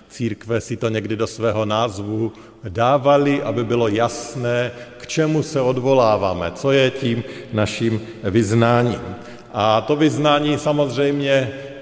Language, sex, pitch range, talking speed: Slovak, male, 115-145 Hz, 120 wpm